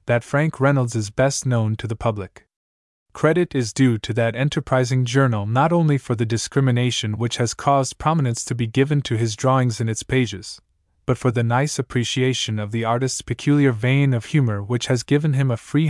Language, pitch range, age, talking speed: English, 115-135 Hz, 20-39, 195 wpm